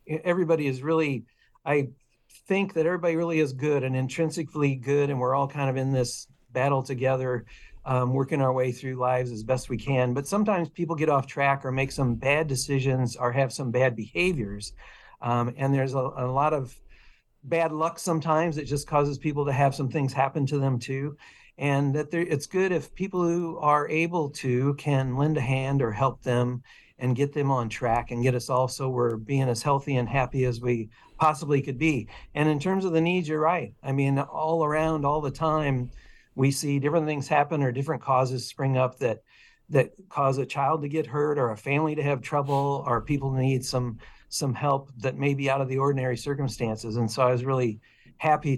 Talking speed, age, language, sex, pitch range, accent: 205 wpm, 50-69, English, male, 130-150 Hz, American